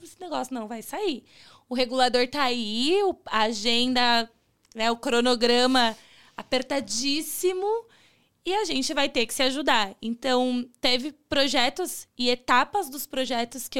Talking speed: 130 wpm